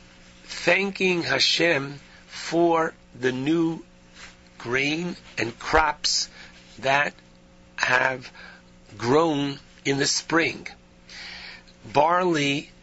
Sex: male